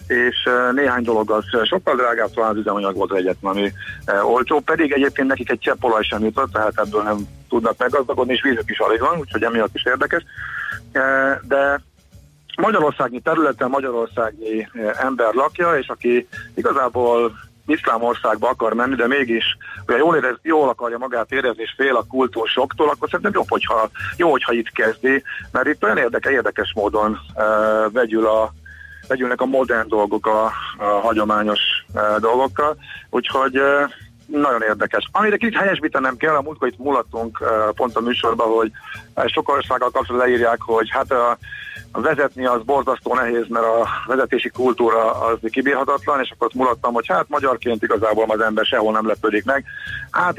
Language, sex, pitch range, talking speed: Hungarian, male, 110-135 Hz, 155 wpm